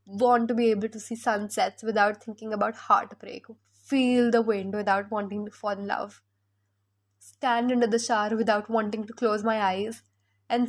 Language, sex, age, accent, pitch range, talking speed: Hindi, female, 10-29, native, 195-235 Hz, 175 wpm